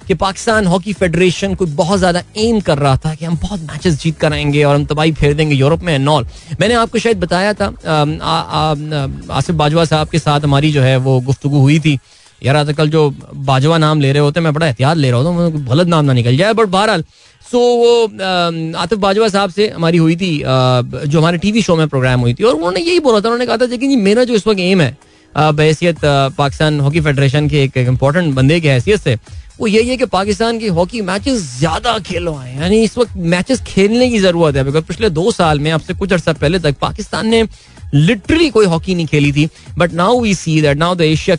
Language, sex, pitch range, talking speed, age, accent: Hindi, male, 140-185 Hz, 220 wpm, 20-39, native